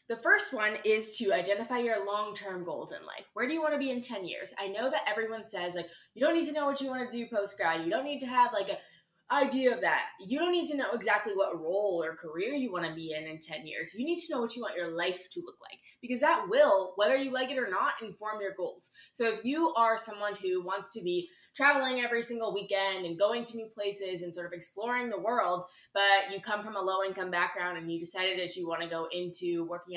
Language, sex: English, female